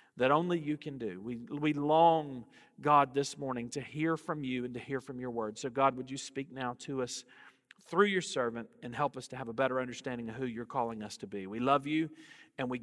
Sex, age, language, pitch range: male, 40-59, English, 145-215 Hz